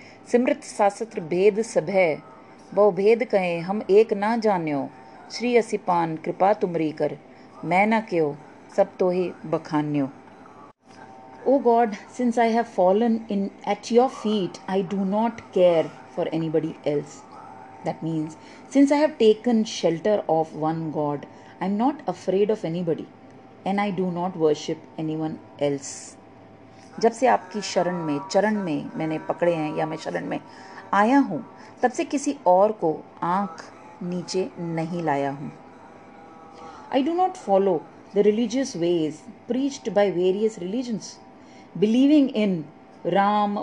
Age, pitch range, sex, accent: 30-49, 160-220 Hz, female, Indian